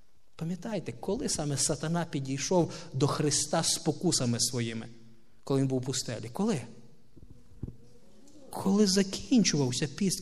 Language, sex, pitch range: Russian, male, 125-170 Hz